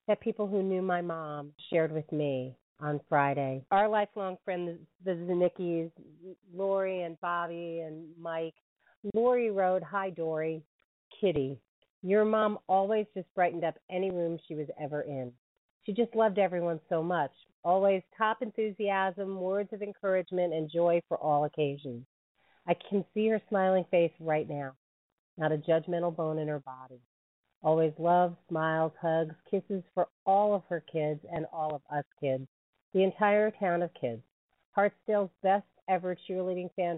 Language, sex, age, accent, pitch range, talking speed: English, female, 40-59, American, 160-195 Hz, 155 wpm